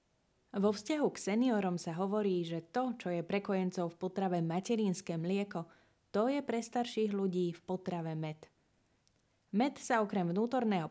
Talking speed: 150 wpm